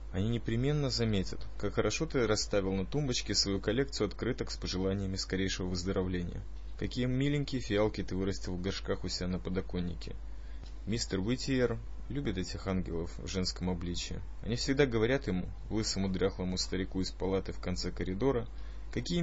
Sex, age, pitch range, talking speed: male, 20-39, 90-115 Hz, 150 wpm